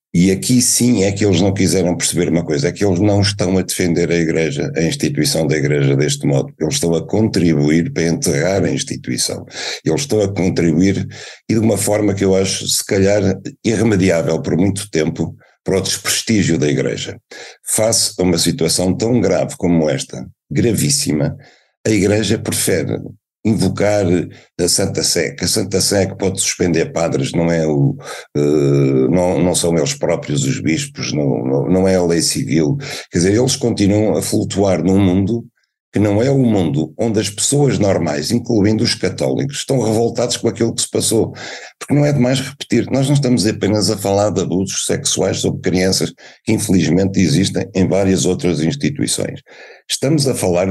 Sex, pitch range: male, 90-125 Hz